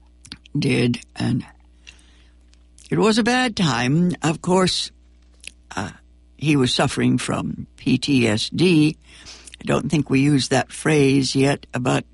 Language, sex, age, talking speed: English, female, 60-79, 120 wpm